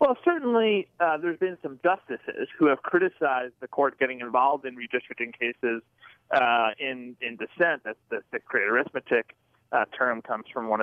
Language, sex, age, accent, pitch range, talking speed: English, male, 30-49, American, 130-180 Hz, 170 wpm